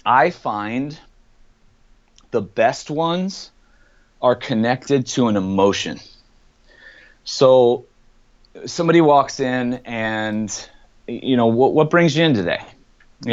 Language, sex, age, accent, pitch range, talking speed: English, male, 30-49, American, 110-135 Hz, 110 wpm